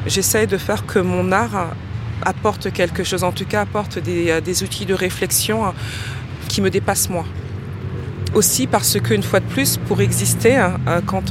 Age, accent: 20-39, French